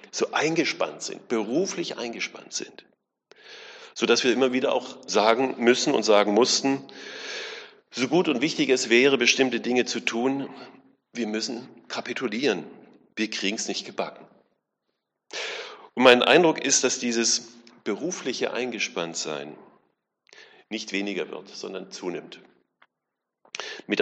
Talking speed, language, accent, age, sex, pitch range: 120 wpm, German, German, 40-59, male, 115-140 Hz